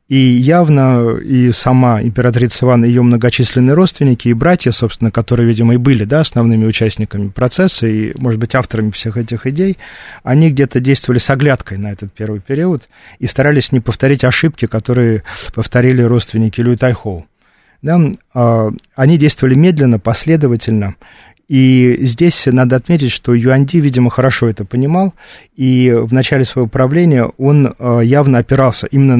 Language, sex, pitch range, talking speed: Russian, male, 115-135 Hz, 140 wpm